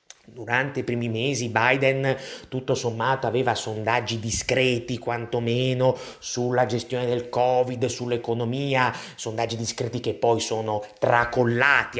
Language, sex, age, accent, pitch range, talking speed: Italian, male, 30-49, native, 115-150 Hz, 110 wpm